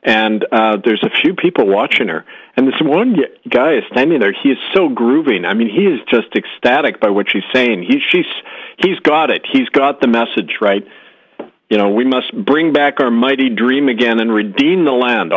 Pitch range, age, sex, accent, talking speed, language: 100-135 Hz, 50-69, male, American, 205 wpm, English